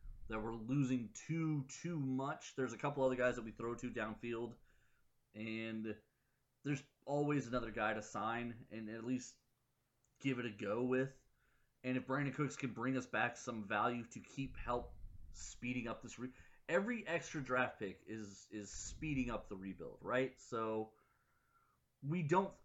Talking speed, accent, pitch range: 160 wpm, American, 110-135 Hz